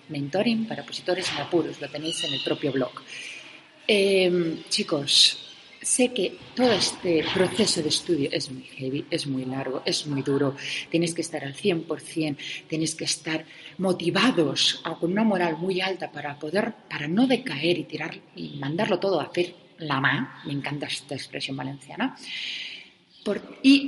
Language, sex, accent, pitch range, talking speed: Spanish, female, Spanish, 150-200 Hz, 160 wpm